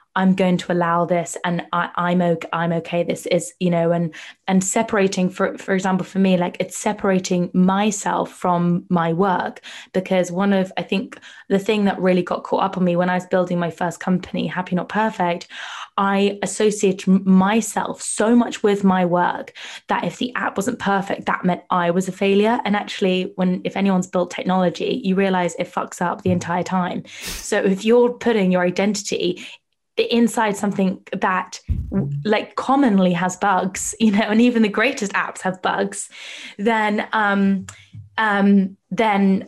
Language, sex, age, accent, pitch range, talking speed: English, female, 20-39, British, 180-205 Hz, 175 wpm